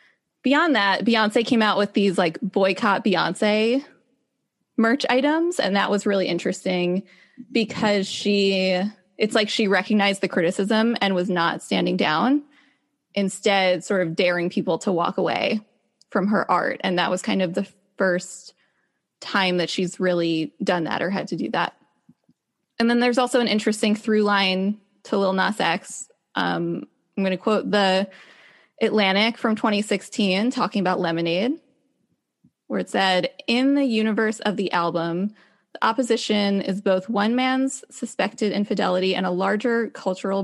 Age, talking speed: 20-39, 155 wpm